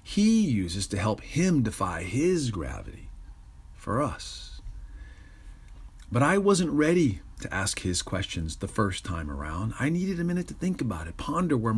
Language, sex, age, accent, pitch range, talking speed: English, male, 40-59, American, 95-125 Hz, 165 wpm